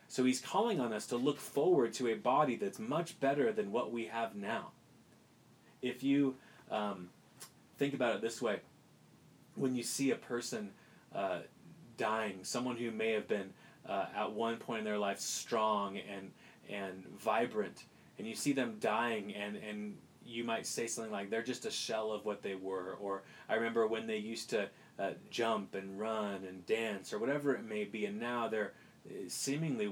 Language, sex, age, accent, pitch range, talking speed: English, male, 30-49, American, 105-135 Hz, 185 wpm